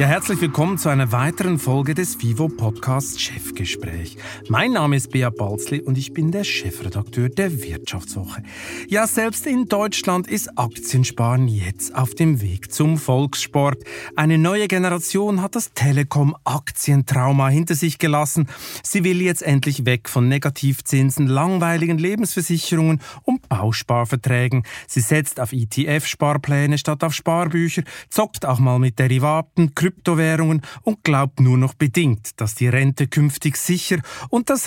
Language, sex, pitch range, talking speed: German, male, 125-170 Hz, 135 wpm